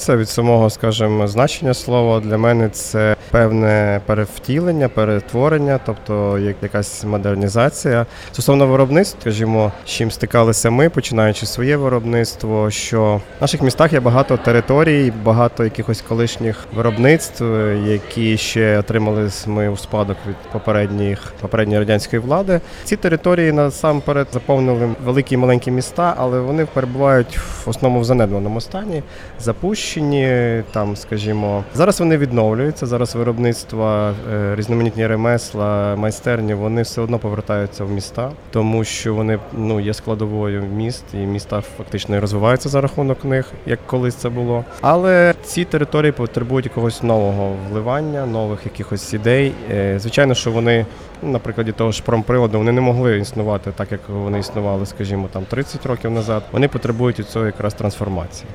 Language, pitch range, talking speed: Ukrainian, 105-130 Hz, 135 wpm